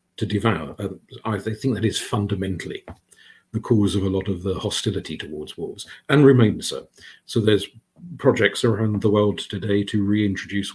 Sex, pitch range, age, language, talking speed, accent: male, 100-115 Hz, 50-69, English, 165 wpm, British